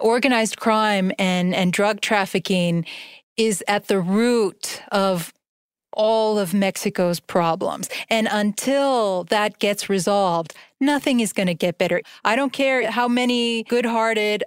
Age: 30-49